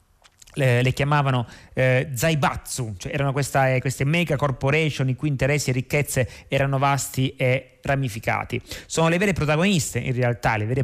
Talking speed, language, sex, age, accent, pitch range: 145 wpm, Italian, male, 30-49, native, 125-165 Hz